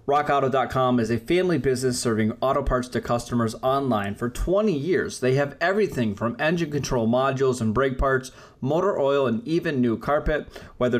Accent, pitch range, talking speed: American, 115-140 Hz, 170 wpm